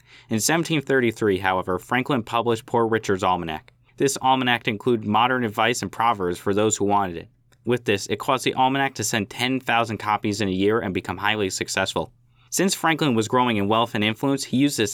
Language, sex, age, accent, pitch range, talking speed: English, male, 20-39, American, 100-125 Hz, 195 wpm